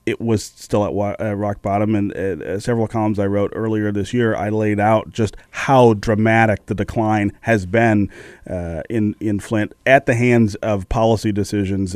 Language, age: English, 30-49